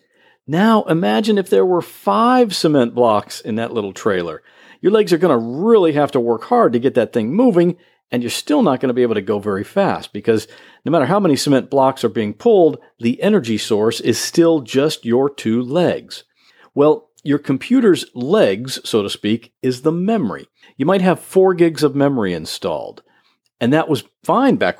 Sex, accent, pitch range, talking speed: male, American, 120-180 Hz, 195 wpm